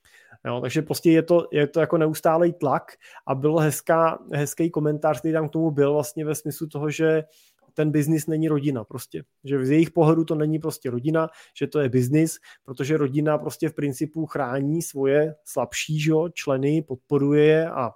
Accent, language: native, Czech